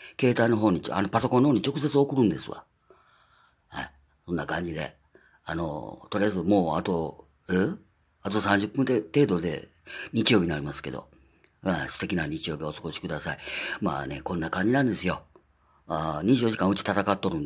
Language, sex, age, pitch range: Japanese, female, 40-59, 85-115 Hz